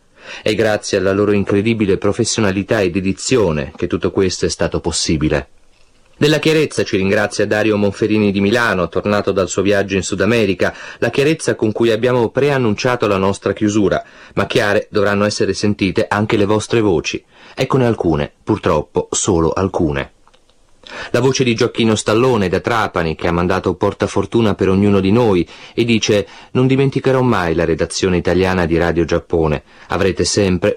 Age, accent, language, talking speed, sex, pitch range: 30-49, native, Italian, 155 wpm, male, 95-115 Hz